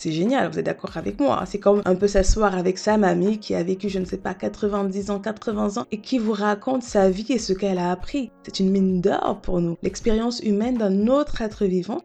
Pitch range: 185-240 Hz